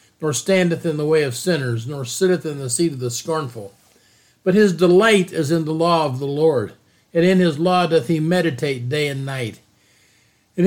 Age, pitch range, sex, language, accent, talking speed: 50-69, 155-190 Hz, male, English, American, 200 wpm